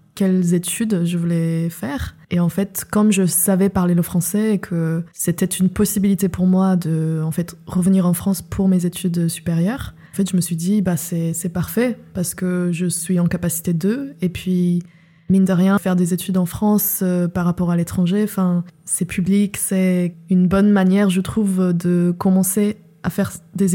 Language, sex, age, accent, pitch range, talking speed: French, female, 20-39, French, 170-190 Hz, 190 wpm